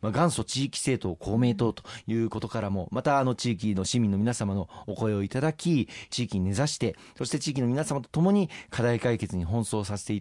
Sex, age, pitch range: male, 40-59, 100-130 Hz